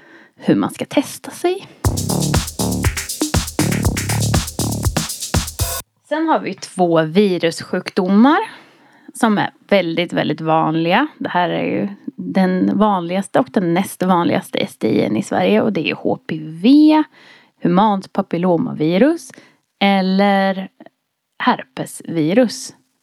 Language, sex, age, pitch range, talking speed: Swedish, female, 30-49, 165-255 Hz, 95 wpm